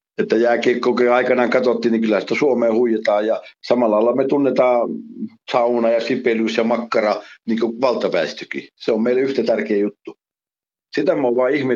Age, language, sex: 60-79, Finnish, male